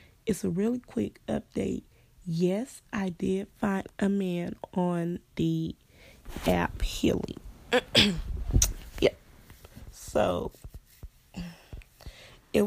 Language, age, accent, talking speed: English, 20-39, American, 85 wpm